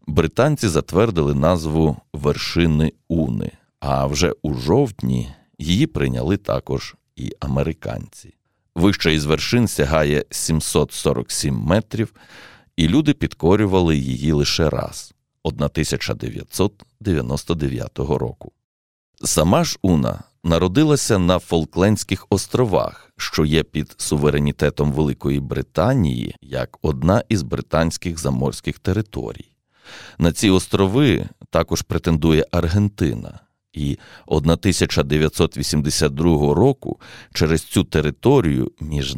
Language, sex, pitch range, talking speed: Ukrainian, male, 75-95 Hz, 95 wpm